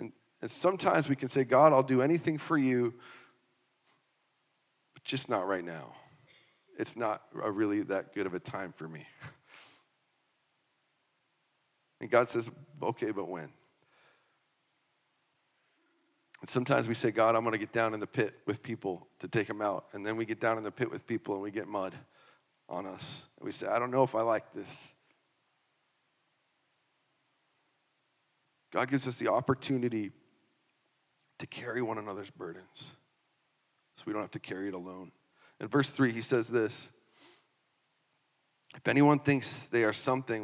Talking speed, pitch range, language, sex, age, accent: 155 wpm, 110-140 Hz, English, male, 40-59, American